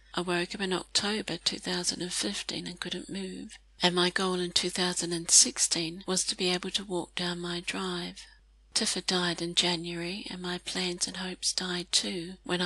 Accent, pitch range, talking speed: British, 175-195 Hz, 165 wpm